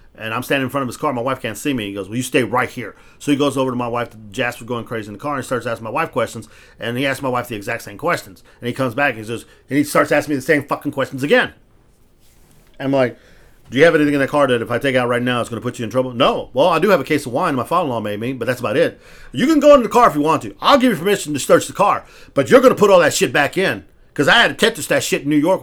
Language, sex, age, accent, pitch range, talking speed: English, male, 40-59, American, 125-175 Hz, 330 wpm